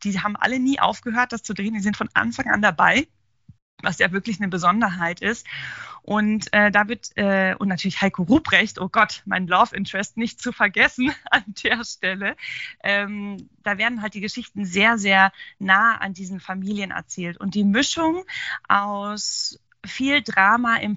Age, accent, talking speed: 20-39, German, 170 wpm